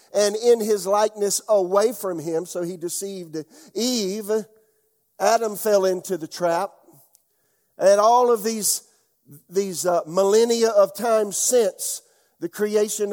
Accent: American